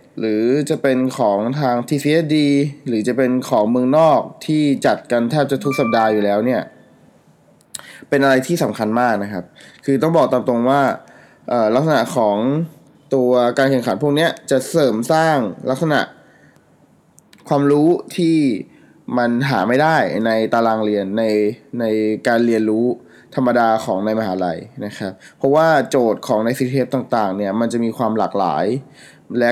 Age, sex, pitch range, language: 20-39, male, 110-140 Hz, Thai